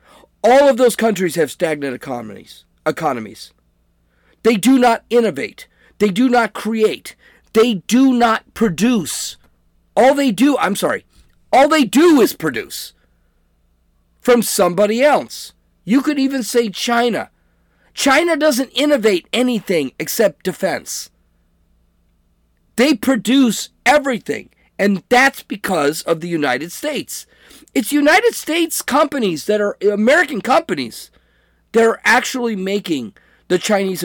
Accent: American